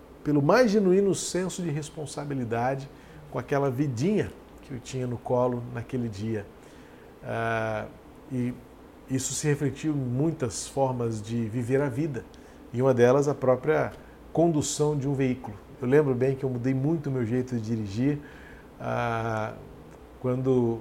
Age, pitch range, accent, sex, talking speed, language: 40-59, 120-150 Hz, Brazilian, male, 145 wpm, Portuguese